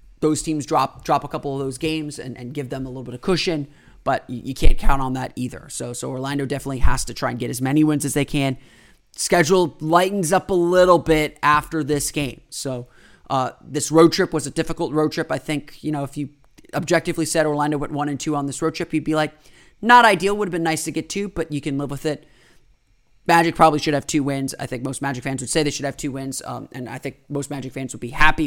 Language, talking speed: English, 255 wpm